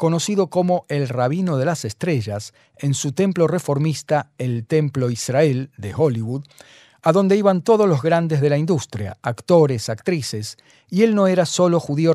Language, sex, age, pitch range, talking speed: Spanish, male, 40-59, 130-170 Hz, 165 wpm